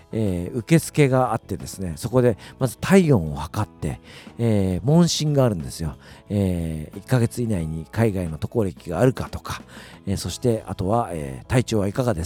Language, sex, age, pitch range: Japanese, male, 50-69, 95-150 Hz